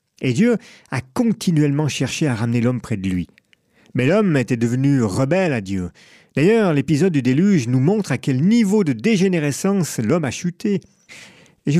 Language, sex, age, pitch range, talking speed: French, male, 40-59, 125-175 Hz, 175 wpm